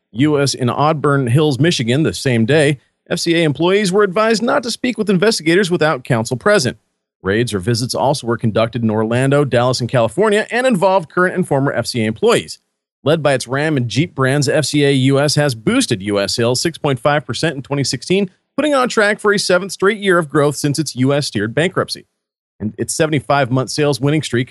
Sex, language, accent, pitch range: male, English, American, 130-180 Hz